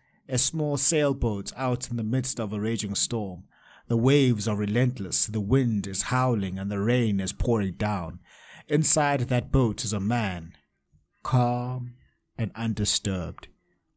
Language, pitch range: English, 100-130 Hz